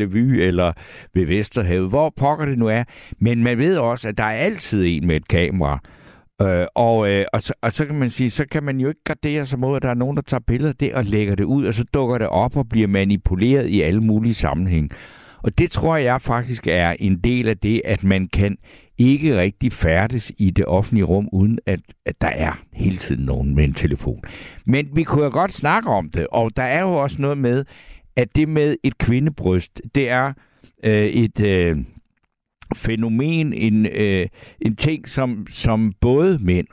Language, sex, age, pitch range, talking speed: Danish, male, 60-79, 95-130 Hz, 210 wpm